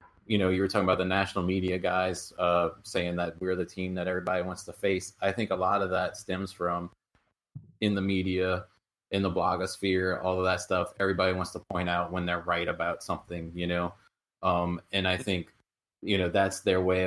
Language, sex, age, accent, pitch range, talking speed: English, male, 20-39, American, 90-95 Hz, 210 wpm